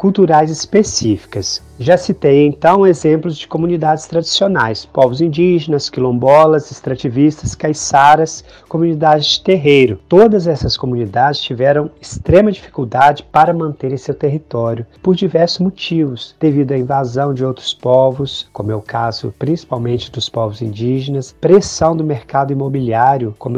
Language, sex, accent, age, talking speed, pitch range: Portuguese, male, Brazilian, 30-49, 125 wpm, 125-160 Hz